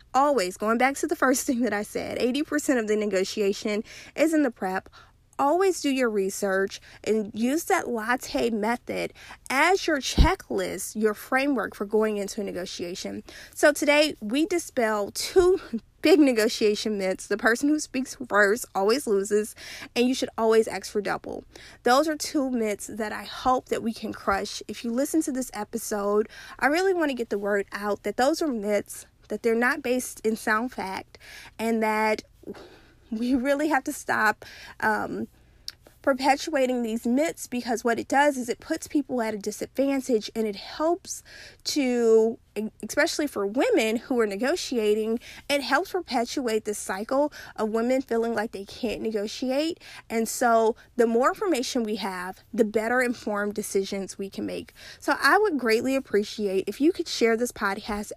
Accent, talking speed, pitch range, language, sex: American, 170 wpm, 210-280 Hz, English, female